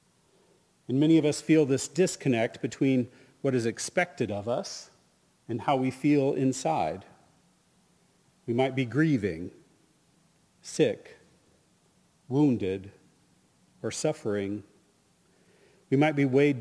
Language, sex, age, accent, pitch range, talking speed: English, male, 40-59, American, 115-145 Hz, 110 wpm